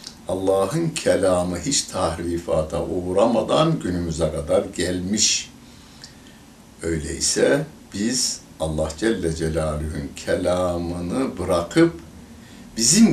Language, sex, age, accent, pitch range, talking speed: Turkish, male, 60-79, native, 85-120 Hz, 75 wpm